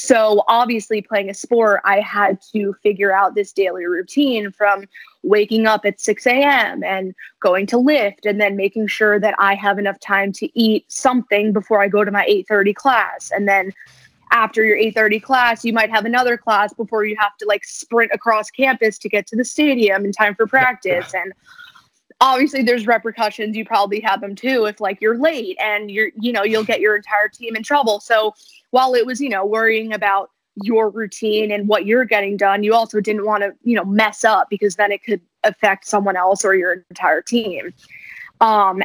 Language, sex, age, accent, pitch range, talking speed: English, female, 20-39, American, 200-230 Hz, 200 wpm